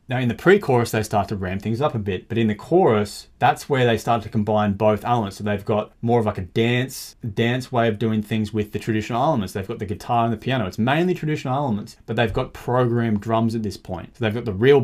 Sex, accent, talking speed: male, Australian, 265 wpm